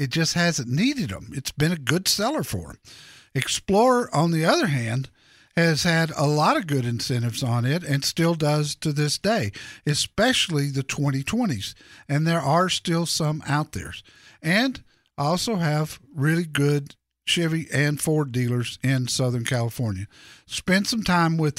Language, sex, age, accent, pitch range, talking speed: English, male, 50-69, American, 130-180 Hz, 160 wpm